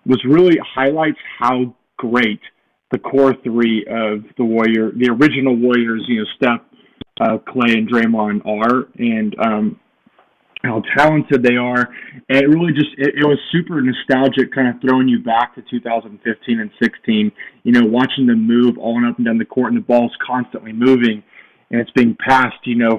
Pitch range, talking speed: 120-150 Hz, 175 wpm